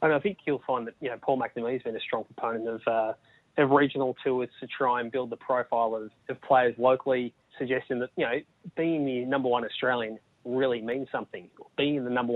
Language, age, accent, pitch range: English, 20-39, Australian, 115-135 Hz